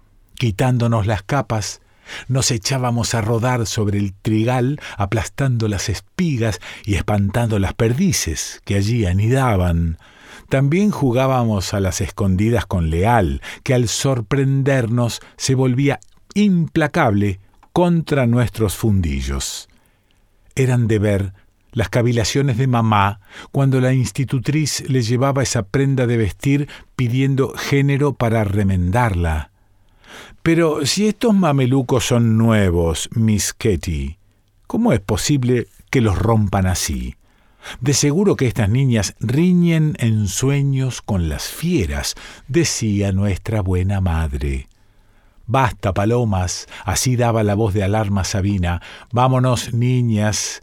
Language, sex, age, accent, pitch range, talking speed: Spanish, male, 50-69, Argentinian, 100-135 Hz, 115 wpm